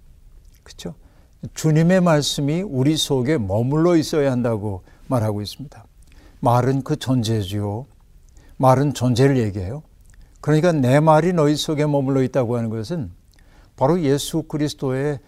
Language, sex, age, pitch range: Korean, male, 60-79, 115-150 Hz